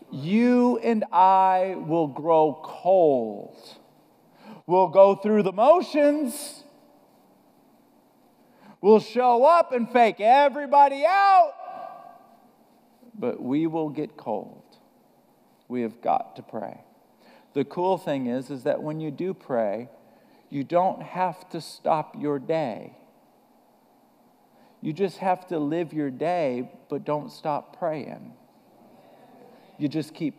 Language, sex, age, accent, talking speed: English, male, 50-69, American, 115 wpm